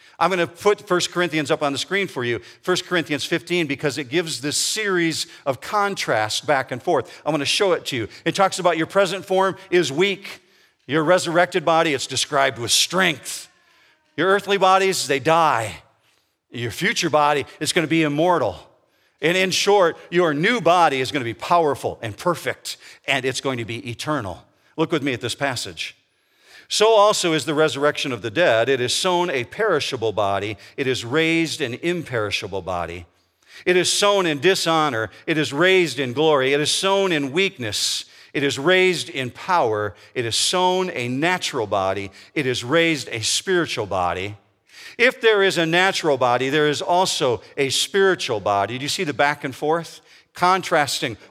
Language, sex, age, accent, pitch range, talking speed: English, male, 50-69, American, 130-180 Hz, 185 wpm